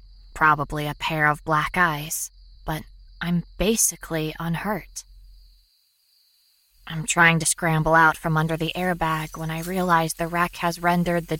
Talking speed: 140 wpm